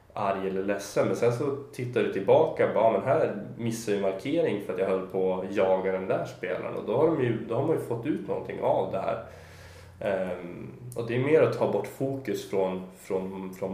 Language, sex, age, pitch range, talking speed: Swedish, male, 20-39, 95-110 Hz, 225 wpm